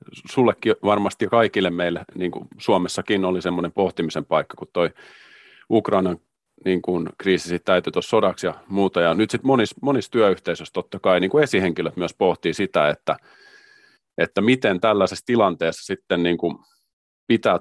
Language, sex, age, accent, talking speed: Finnish, male, 30-49, native, 140 wpm